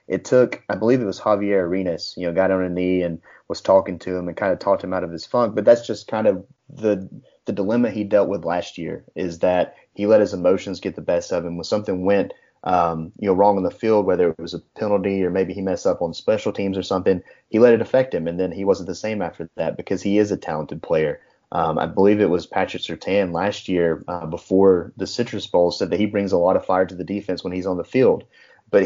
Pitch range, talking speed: 90-105 Hz, 265 wpm